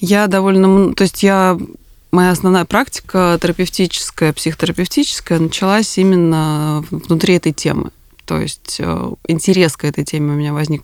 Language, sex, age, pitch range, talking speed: Russian, female, 20-39, 150-185 Hz, 135 wpm